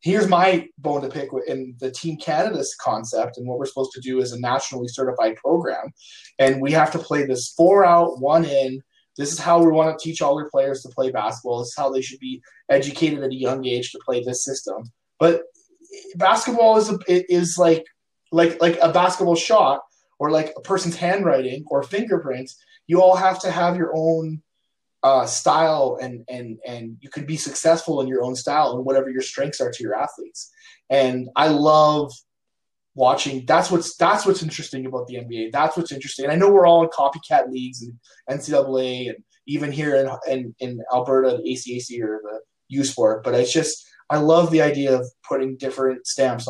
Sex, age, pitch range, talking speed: male, 20-39, 130-170 Hz, 200 wpm